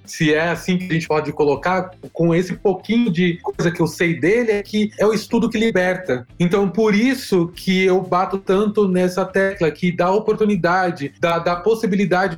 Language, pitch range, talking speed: Portuguese, 170-205 Hz, 190 wpm